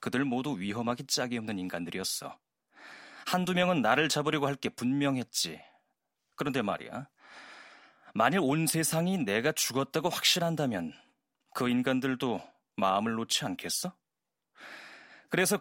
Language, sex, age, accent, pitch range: Korean, male, 30-49, native, 115-155 Hz